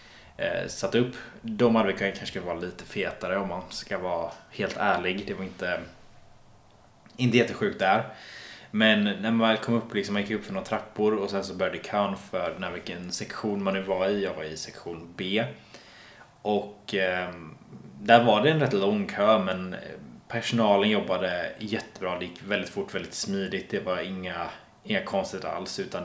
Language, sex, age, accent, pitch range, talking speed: Swedish, male, 20-39, Norwegian, 95-115 Hz, 180 wpm